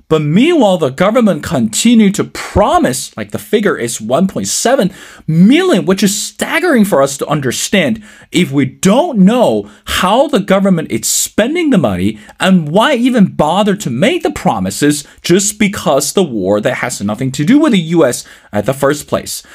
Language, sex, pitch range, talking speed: English, male, 140-215 Hz, 175 wpm